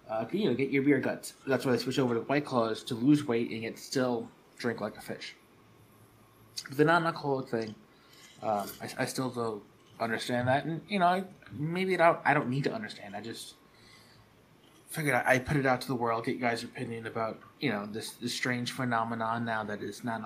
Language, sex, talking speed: English, male, 220 wpm